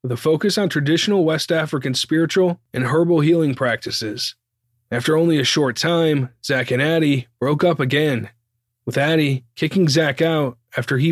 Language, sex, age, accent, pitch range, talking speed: English, male, 20-39, American, 120-155 Hz, 160 wpm